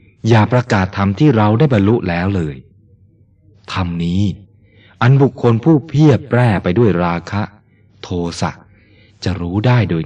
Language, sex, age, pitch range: Thai, male, 20-39, 85-105 Hz